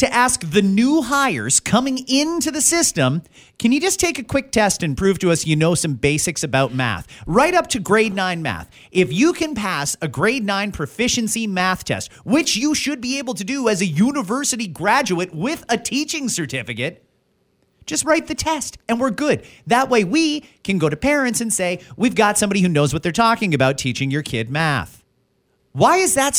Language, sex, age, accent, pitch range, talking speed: English, male, 40-59, American, 175-270 Hz, 200 wpm